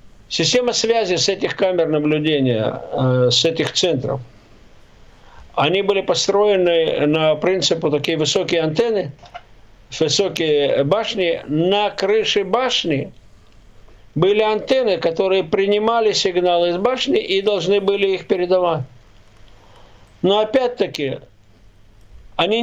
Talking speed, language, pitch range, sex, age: 100 wpm, Russian, 130-210 Hz, male, 60-79